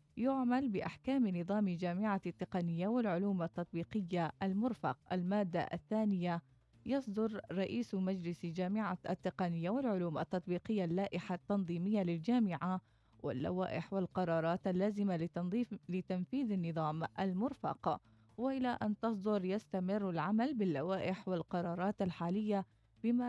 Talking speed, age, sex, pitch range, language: 95 wpm, 20-39, female, 170-215 Hz, Arabic